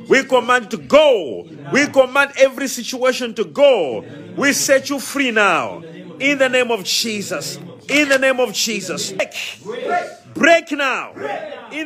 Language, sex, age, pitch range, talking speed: English, male, 50-69, 210-275 Hz, 150 wpm